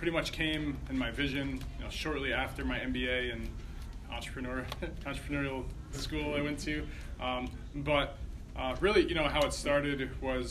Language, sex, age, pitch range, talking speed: English, male, 20-39, 115-140 Hz, 165 wpm